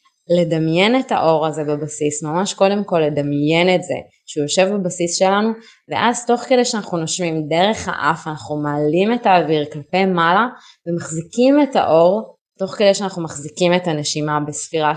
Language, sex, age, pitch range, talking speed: Hebrew, female, 20-39, 150-185 Hz, 150 wpm